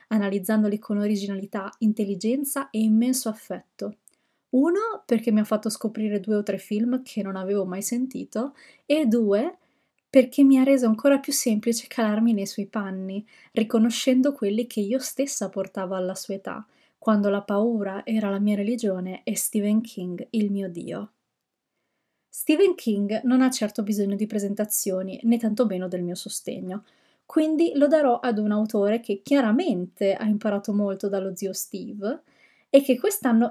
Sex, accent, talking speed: female, native, 155 wpm